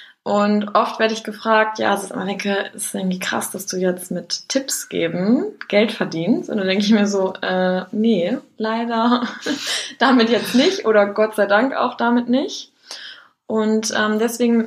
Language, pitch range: German, 185-230 Hz